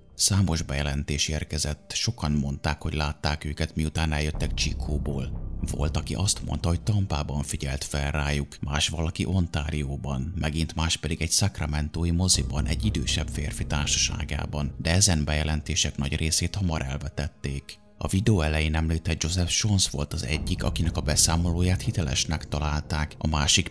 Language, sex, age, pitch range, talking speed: Hungarian, male, 30-49, 75-90 Hz, 140 wpm